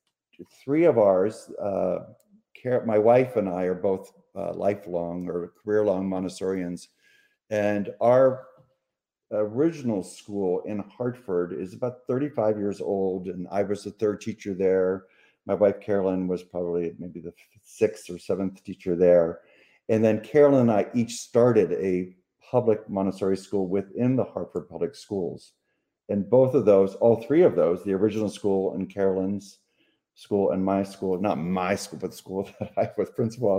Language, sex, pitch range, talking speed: English, male, 95-120 Hz, 160 wpm